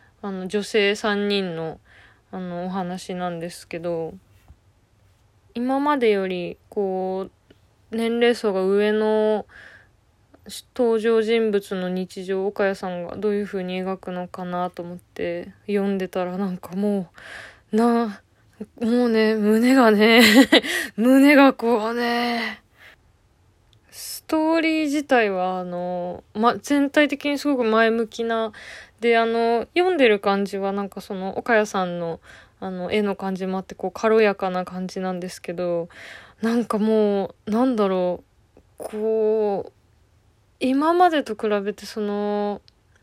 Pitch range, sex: 180-230 Hz, female